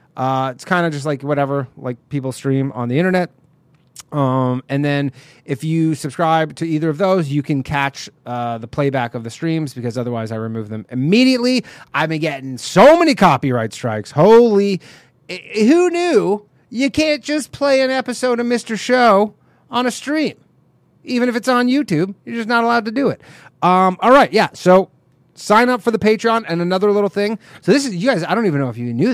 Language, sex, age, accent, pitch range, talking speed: English, male, 30-49, American, 140-215 Hz, 200 wpm